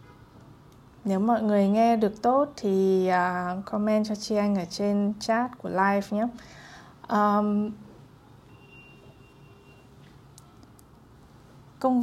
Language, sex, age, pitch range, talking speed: Vietnamese, female, 20-39, 170-210 Hz, 90 wpm